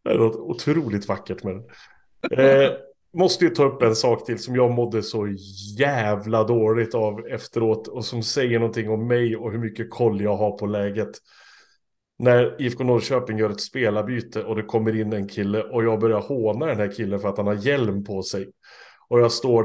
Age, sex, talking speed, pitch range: 30-49, male, 195 wpm, 110-130 Hz